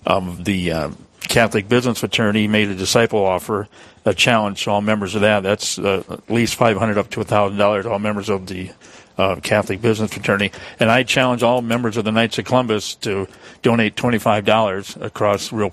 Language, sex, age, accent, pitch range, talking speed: English, male, 50-69, American, 105-125 Hz, 185 wpm